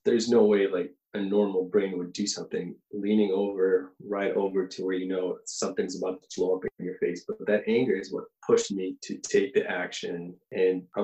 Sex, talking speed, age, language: male, 210 wpm, 20-39, English